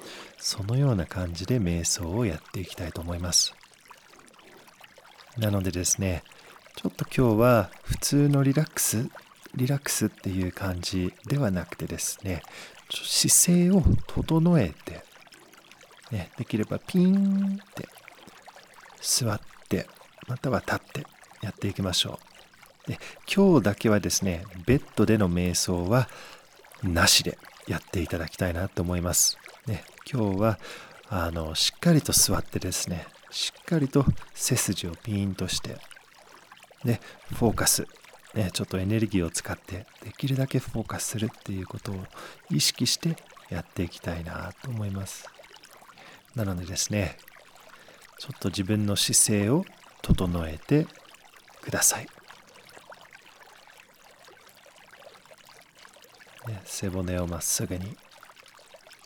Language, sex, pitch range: English, male, 90-130 Hz